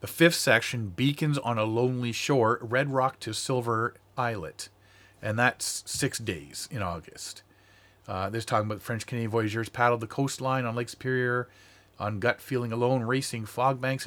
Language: English